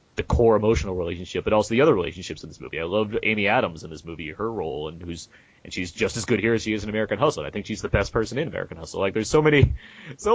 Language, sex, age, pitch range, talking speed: English, male, 30-49, 90-125 Hz, 290 wpm